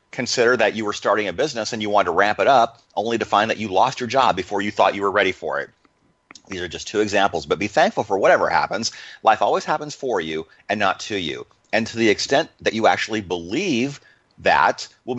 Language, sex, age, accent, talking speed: English, male, 30-49, American, 235 wpm